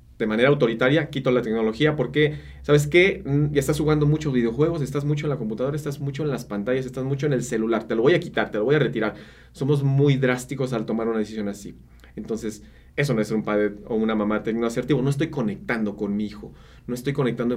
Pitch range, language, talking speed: 115-150 Hz, Spanish, 225 wpm